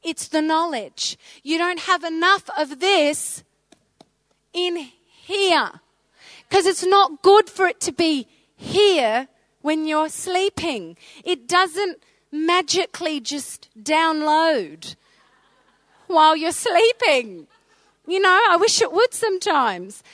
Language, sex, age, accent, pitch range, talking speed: English, female, 30-49, Australian, 265-395 Hz, 115 wpm